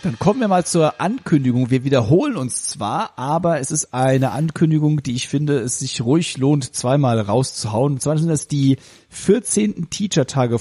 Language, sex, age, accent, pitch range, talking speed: German, male, 40-59, German, 125-165 Hz, 175 wpm